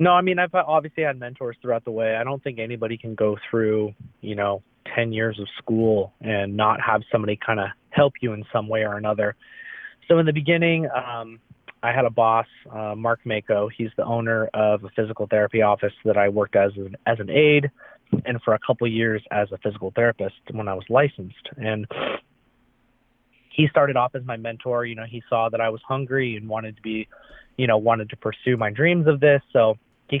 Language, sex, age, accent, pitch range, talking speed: English, male, 30-49, American, 110-130 Hz, 215 wpm